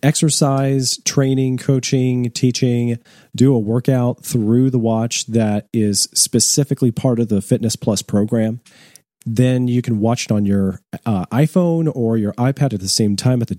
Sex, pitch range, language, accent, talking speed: male, 115-140 Hz, English, American, 165 wpm